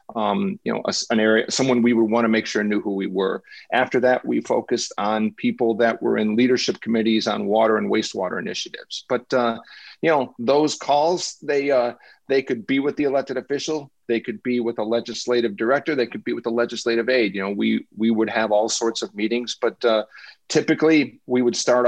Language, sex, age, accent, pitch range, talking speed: English, male, 40-59, American, 110-125 Hz, 210 wpm